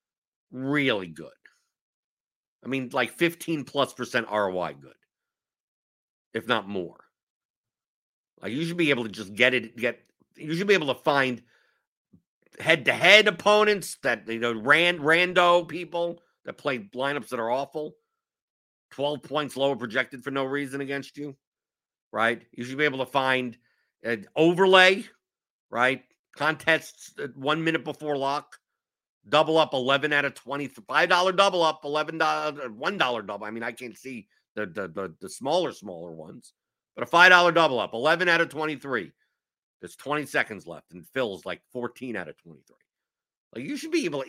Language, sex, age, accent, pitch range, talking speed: English, male, 50-69, American, 125-170 Hz, 160 wpm